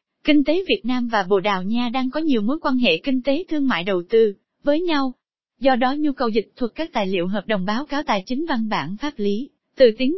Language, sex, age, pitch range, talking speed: Vietnamese, female, 20-39, 210-275 Hz, 255 wpm